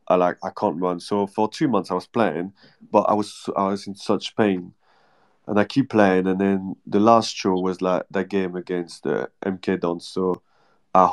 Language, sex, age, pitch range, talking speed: English, male, 20-39, 90-100 Hz, 205 wpm